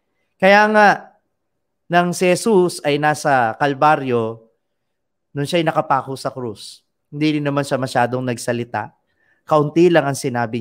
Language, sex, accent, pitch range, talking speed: Filipino, male, native, 125-160 Hz, 130 wpm